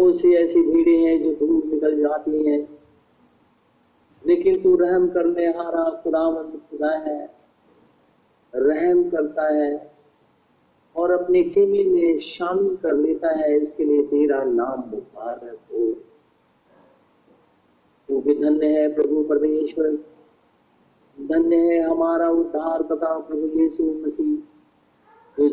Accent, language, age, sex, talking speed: native, Hindi, 50-69, male, 115 wpm